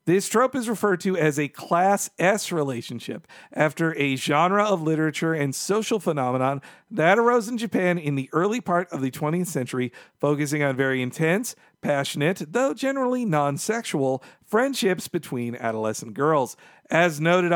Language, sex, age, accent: English, male, 50-69, American